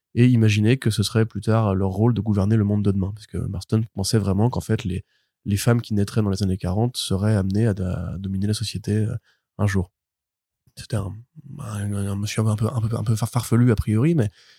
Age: 20-39